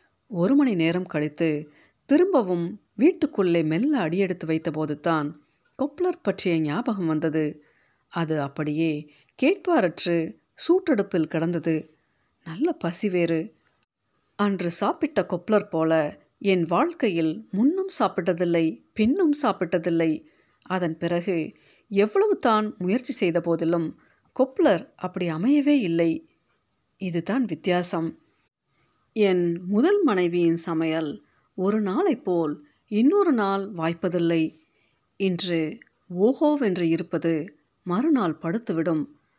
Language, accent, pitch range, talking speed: Tamil, native, 165-235 Hz, 90 wpm